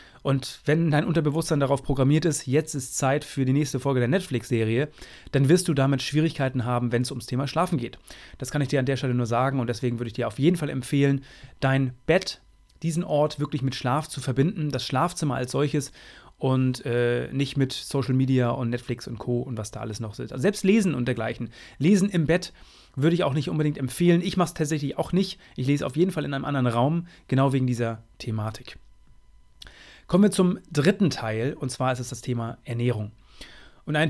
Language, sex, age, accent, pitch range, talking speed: German, male, 30-49, German, 125-155 Hz, 215 wpm